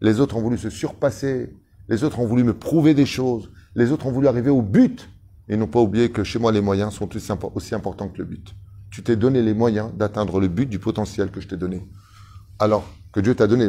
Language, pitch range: French, 100-130 Hz